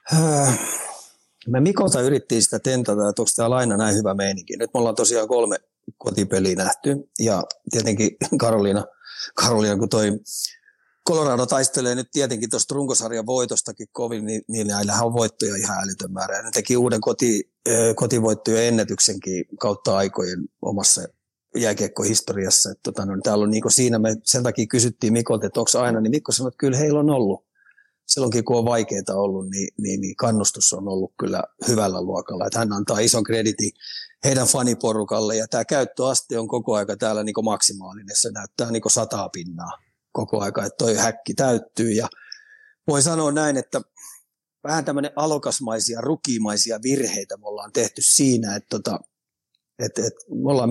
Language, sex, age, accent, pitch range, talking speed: Finnish, male, 30-49, native, 105-130 Hz, 155 wpm